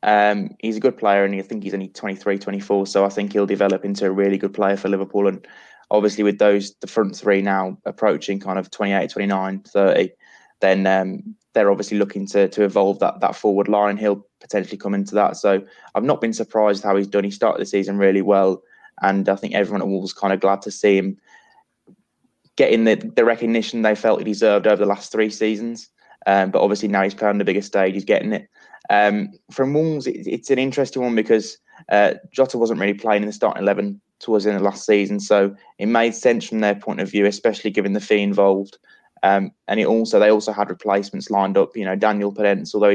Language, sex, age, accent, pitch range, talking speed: English, male, 20-39, British, 100-110 Hz, 225 wpm